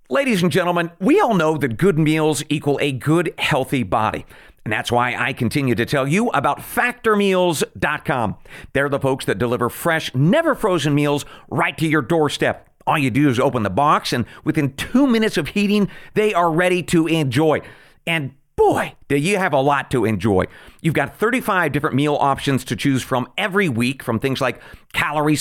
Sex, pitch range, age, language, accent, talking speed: male, 140-205 Hz, 40-59, English, American, 185 wpm